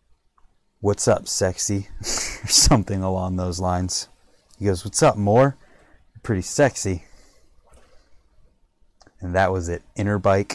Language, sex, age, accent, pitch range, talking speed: English, male, 30-49, American, 85-105 Hz, 120 wpm